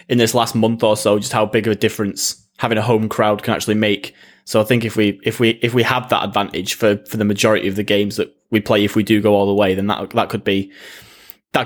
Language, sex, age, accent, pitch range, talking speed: English, male, 20-39, British, 105-120 Hz, 280 wpm